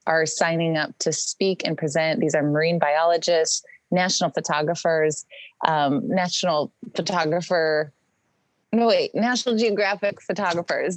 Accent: American